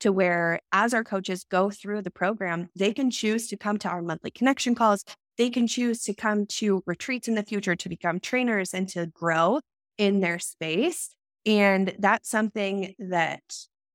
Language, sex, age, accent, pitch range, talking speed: English, female, 20-39, American, 175-220 Hz, 180 wpm